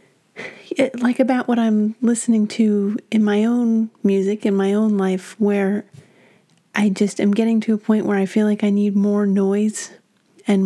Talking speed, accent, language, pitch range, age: 175 wpm, American, English, 195-225 Hz, 30-49